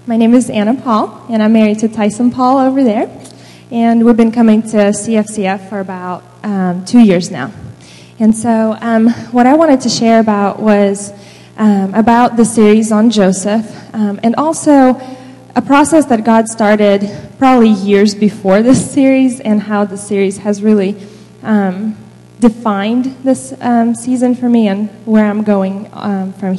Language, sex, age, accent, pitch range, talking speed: English, female, 10-29, American, 200-230 Hz, 165 wpm